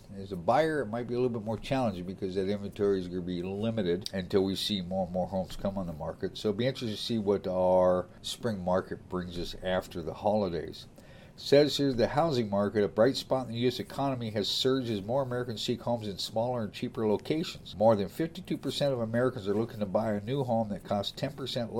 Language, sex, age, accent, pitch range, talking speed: English, male, 50-69, American, 100-130 Hz, 235 wpm